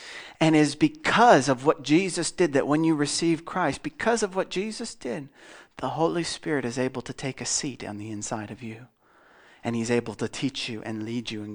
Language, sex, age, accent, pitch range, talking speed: English, male, 40-59, American, 120-165 Hz, 215 wpm